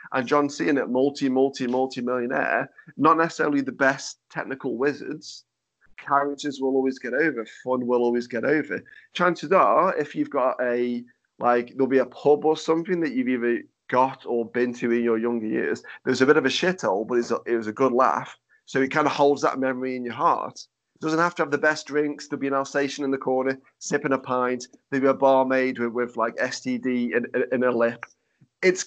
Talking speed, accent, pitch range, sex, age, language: 205 wpm, British, 120-140 Hz, male, 30-49, English